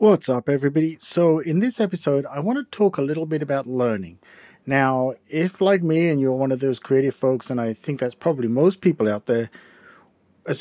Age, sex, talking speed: 50-69, male, 210 wpm